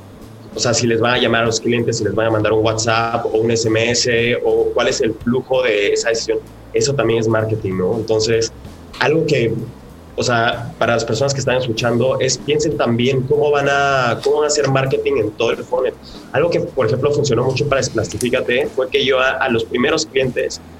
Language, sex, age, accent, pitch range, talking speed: Spanish, male, 30-49, Mexican, 115-150 Hz, 215 wpm